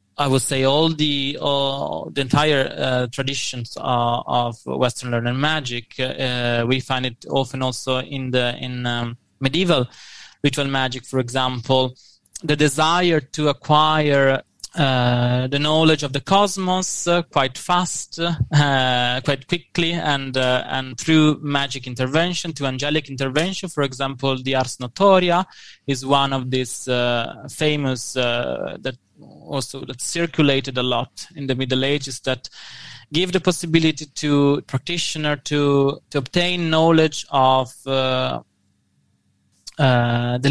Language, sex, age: English, male, 20-39